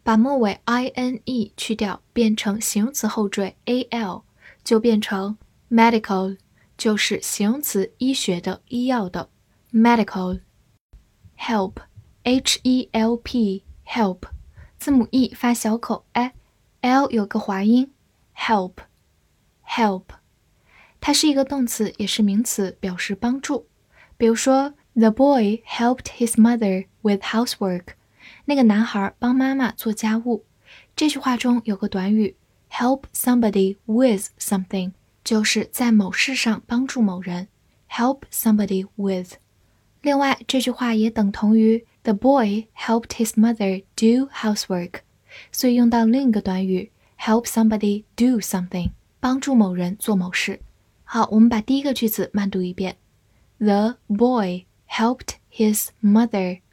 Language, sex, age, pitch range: Chinese, female, 10-29, 195-245 Hz